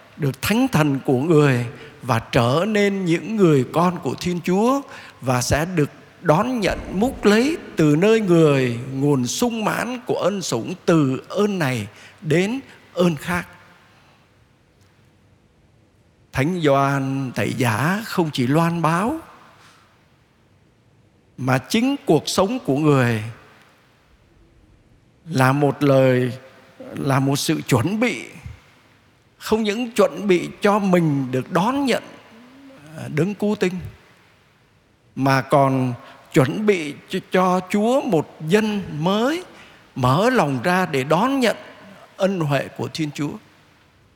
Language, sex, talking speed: Vietnamese, male, 120 wpm